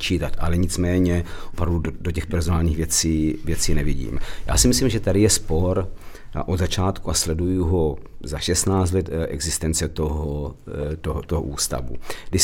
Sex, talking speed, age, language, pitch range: male, 145 wpm, 50-69, Czech, 80-90 Hz